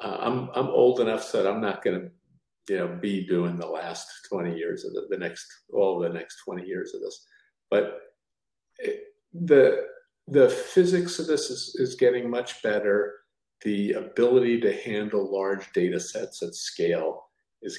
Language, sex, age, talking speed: English, male, 50-69, 175 wpm